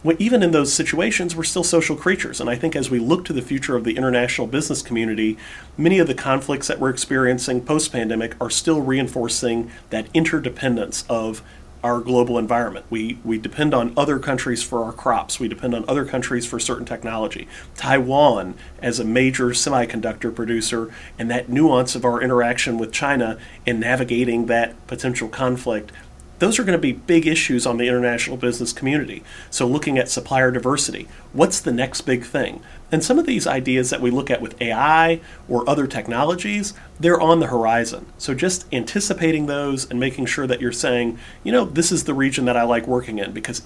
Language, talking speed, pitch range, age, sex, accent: English, 185 wpm, 120-145 Hz, 40-59, male, American